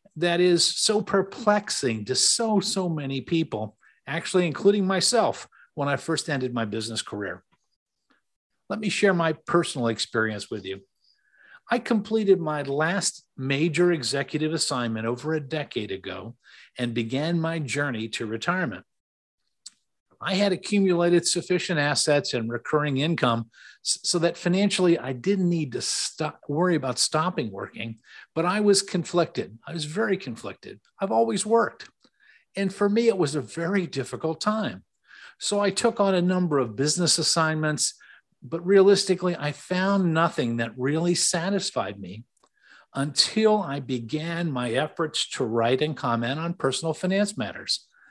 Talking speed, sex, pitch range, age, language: 140 wpm, male, 130-185 Hz, 50-69, English